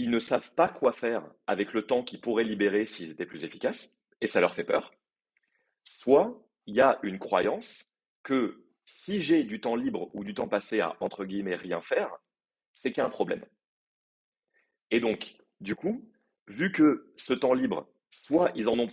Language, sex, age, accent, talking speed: French, male, 30-49, French, 195 wpm